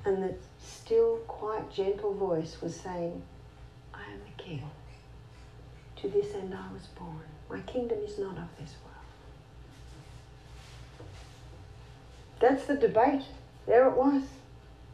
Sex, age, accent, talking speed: female, 50-69, Australian, 125 wpm